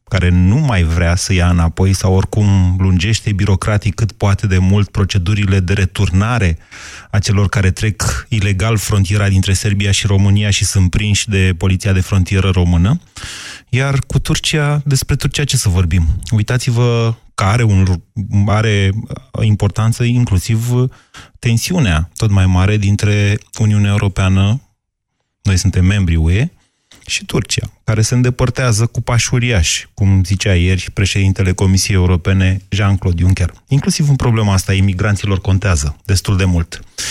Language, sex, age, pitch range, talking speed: Romanian, male, 30-49, 95-115 Hz, 140 wpm